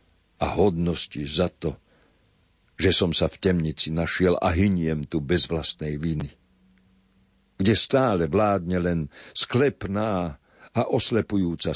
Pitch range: 80-100 Hz